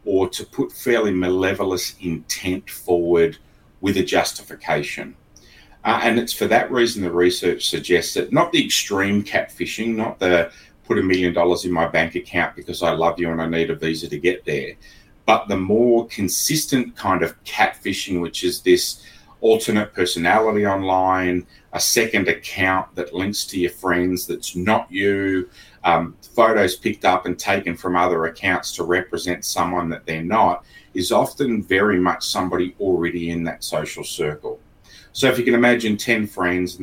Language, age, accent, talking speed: English, 30-49, Australian, 170 wpm